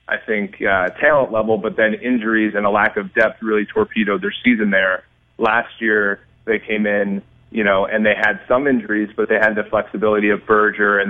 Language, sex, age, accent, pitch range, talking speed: English, male, 30-49, American, 105-120 Hz, 205 wpm